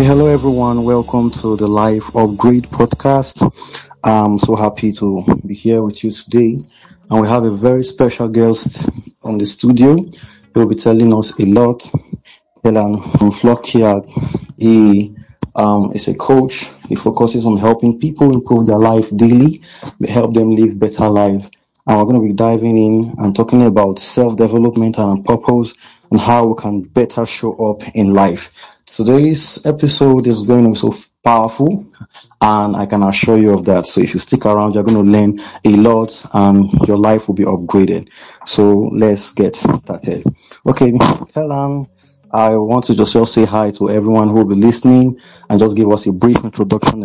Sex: male